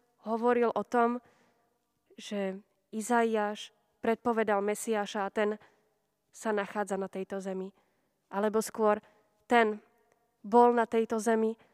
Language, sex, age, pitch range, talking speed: Slovak, female, 20-39, 210-245 Hz, 105 wpm